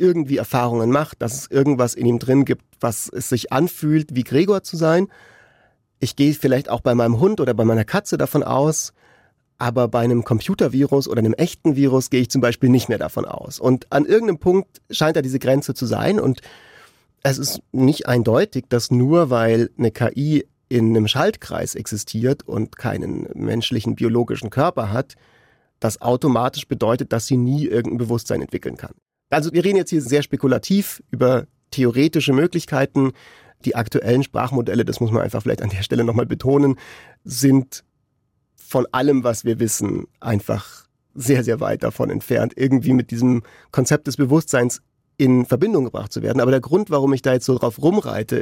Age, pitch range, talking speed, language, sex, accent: 40-59, 120-140 Hz, 175 wpm, German, male, German